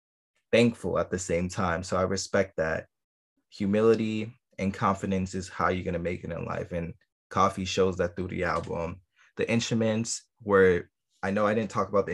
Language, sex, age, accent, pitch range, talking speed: English, male, 20-39, American, 90-100 Hz, 190 wpm